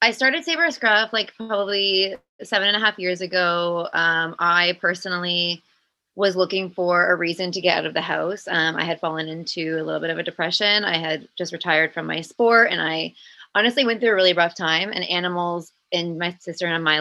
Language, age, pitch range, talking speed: English, 20-39, 170-195 Hz, 215 wpm